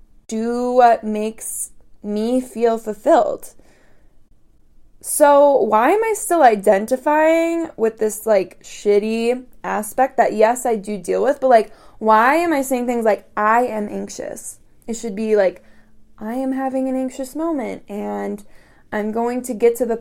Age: 20-39